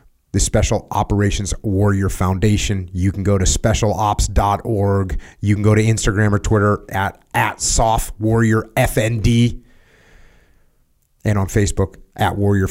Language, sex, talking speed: English, male, 120 wpm